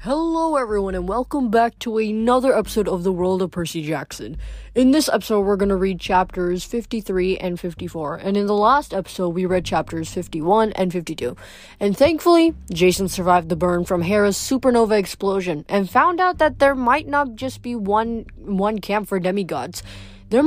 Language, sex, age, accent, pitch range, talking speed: English, female, 20-39, American, 185-240 Hz, 175 wpm